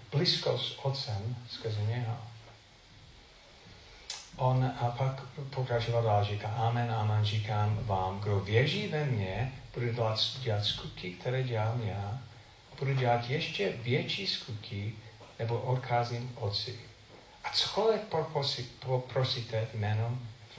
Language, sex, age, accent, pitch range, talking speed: Czech, male, 40-59, native, 110-140 Hz, 110 wpm